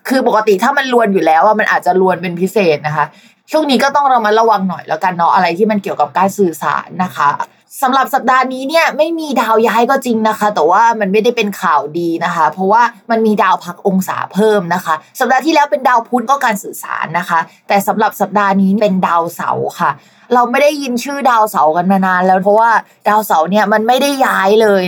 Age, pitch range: 20-39, 190-240 Hz